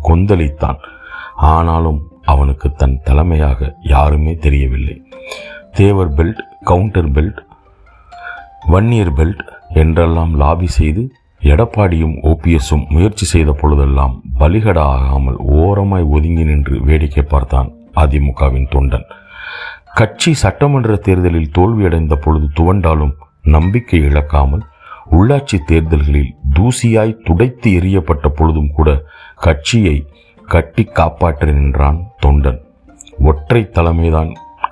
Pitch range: 75-90 Hz